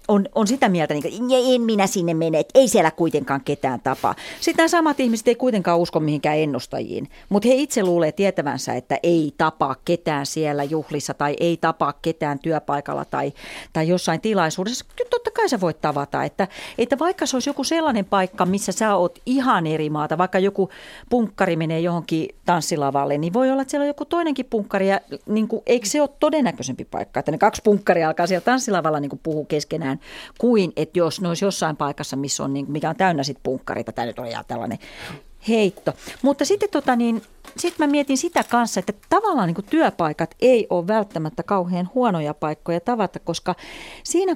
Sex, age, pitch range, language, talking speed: female, 40-59, 160-240 Hz, Finnish, 185 wpm